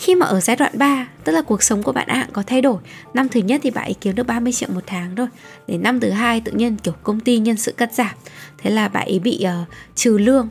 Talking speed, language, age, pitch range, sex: 285 wpm, Vietnamese, 10-29, 195-275 Hz, female